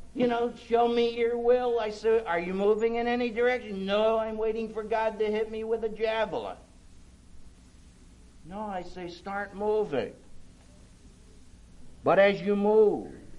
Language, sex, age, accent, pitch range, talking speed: English, male, 60-79, American, 140-225 Hz, 150 wpm